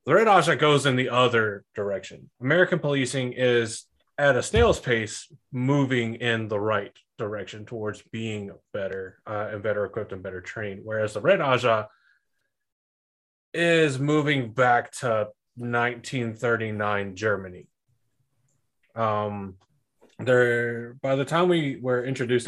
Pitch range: 105-125 Hz